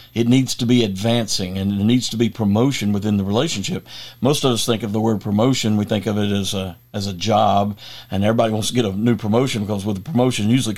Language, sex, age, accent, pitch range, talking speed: English, male, 50-69, American, 105-120 Hz, 245 wpm